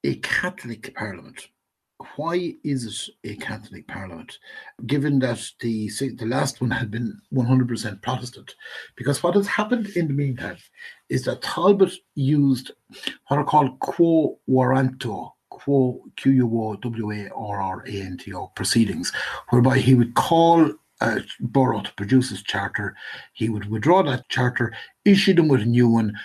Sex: male